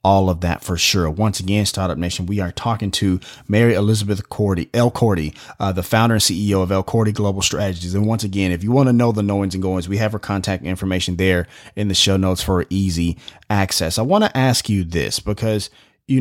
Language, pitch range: English, 95-115 Hz